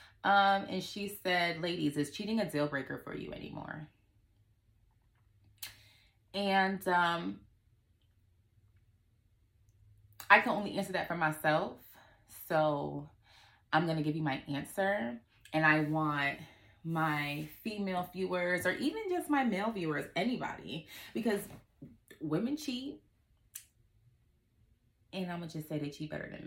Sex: female